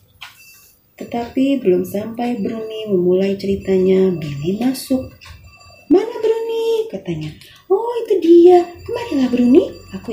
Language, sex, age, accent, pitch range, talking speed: Indonesian, female, 30-49, native, 180-255 Hz, 100 wpm